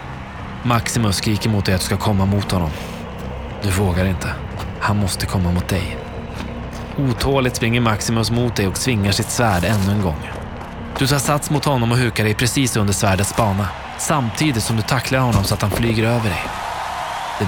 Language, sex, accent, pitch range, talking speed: Swedish, male, native, 95-120 Hz, 185 wpm